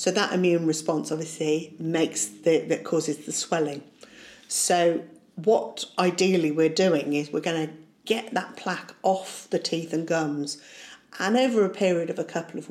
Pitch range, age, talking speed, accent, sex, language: 160-190 Hz, 50-69, 170 wpm, British, female, English